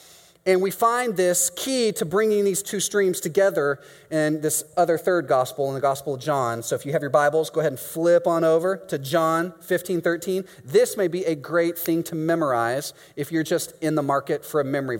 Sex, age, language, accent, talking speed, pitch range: male, 30-49, English, American, 215 wpm, 160-200 Hz